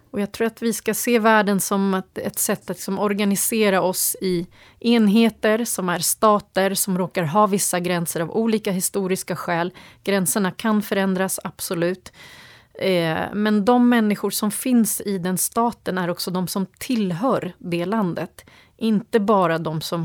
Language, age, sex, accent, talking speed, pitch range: English, 30-49, female, Swedish, 160 wpm, 175-210 Hz